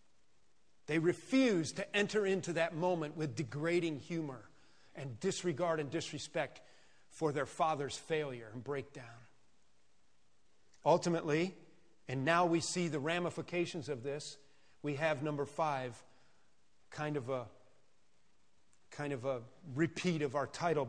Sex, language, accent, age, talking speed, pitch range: male, English, American, 40-59, 120 wpm, 145-195 Hz